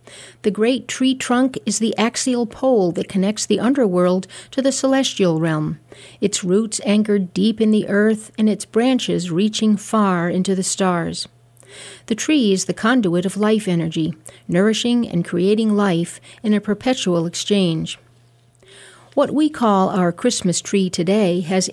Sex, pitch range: female, 175-220 Hz